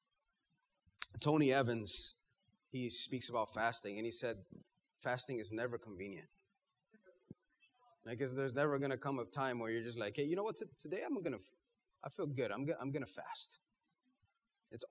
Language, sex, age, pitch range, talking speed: English, male, 30-49, 125-165 Hz, 175 wpm